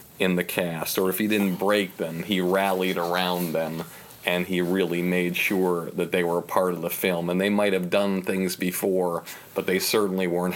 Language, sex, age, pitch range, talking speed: English, male, 40-59, 90-100 Hz, 210 wpm